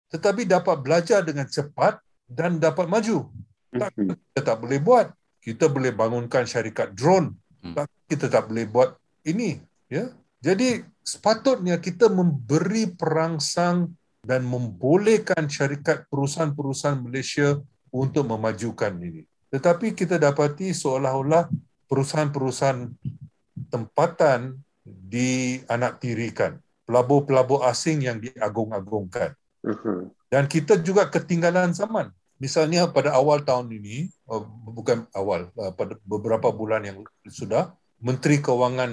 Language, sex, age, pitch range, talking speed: Malay, male, 50-69, 115-165 Hz, 100 wpm